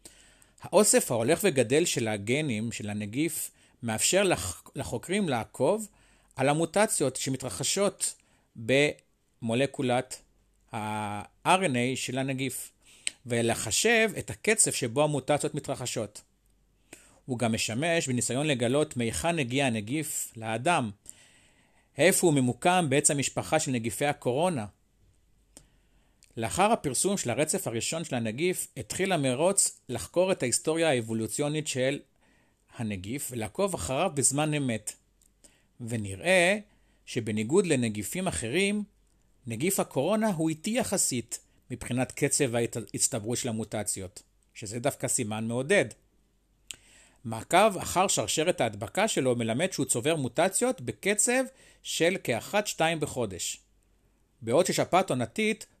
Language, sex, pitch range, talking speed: Hebrew, male, 115-165 Hz, 100 wpm